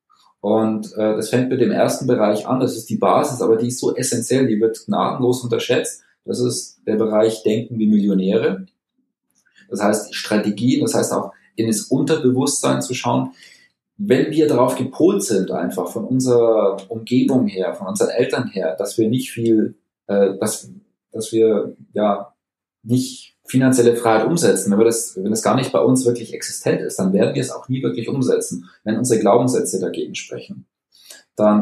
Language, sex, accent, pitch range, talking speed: German, male, German, 110-130 Hz, 175 wpm